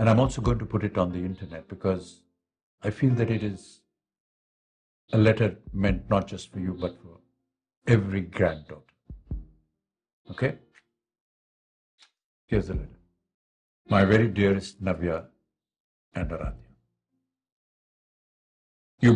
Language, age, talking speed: Telugu, 60-79, 120 wpm